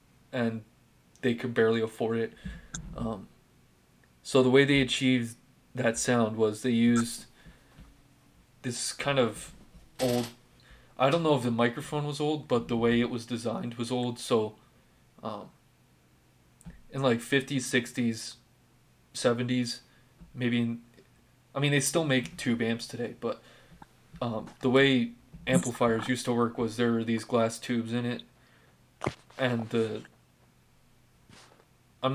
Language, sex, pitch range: English, male, 115-130 Hz